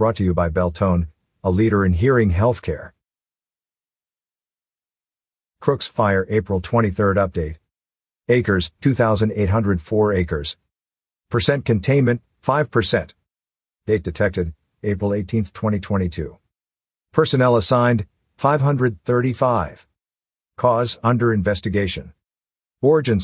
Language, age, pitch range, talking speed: English, 50-69, 95-125 Hz, 90 wpm